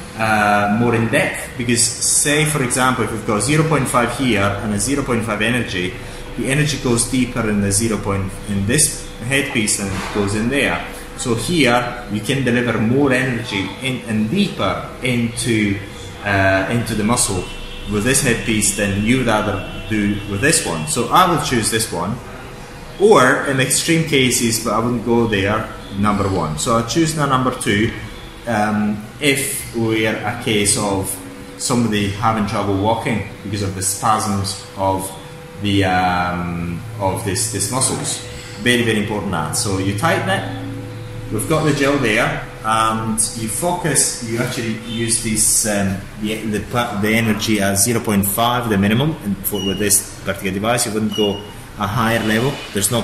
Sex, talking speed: male, 165 wpm